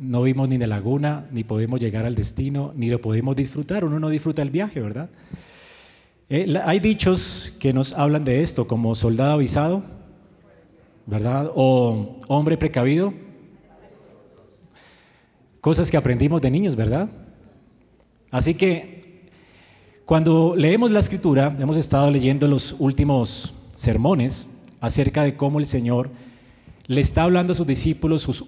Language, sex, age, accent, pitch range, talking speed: Spanish, male, 30-49, Colombian, 125-160 Hz, 135 wpm